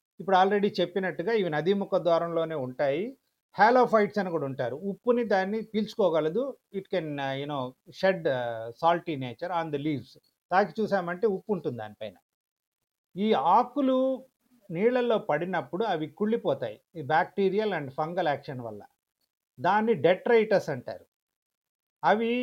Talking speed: 110 wpm